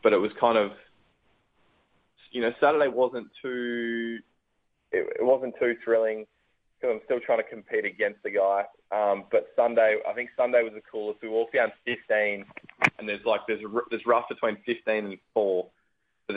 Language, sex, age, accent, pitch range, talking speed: English, male, 20-39, Australian, 100-120 Hz, 180 wpm